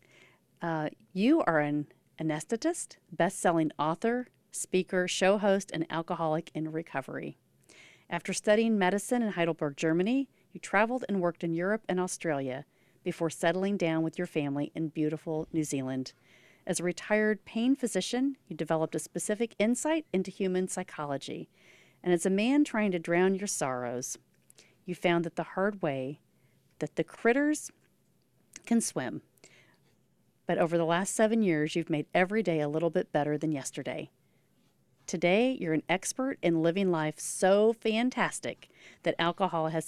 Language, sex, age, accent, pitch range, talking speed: English, female, 40-59, American, 160-210 Hz, 150 wpm